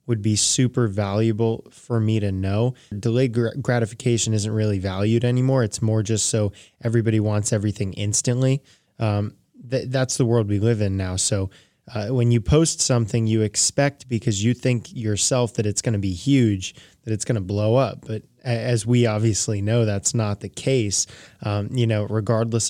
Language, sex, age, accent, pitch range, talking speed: English, male, 20-39, American, 105-125 Hz, 175 wpm